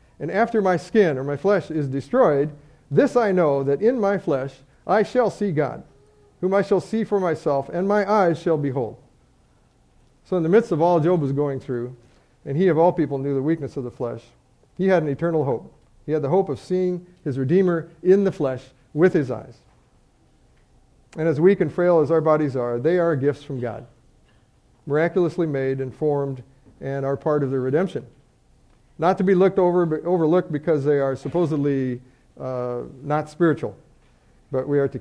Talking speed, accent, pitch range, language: 195 wpm, American, 135-175 Hz, English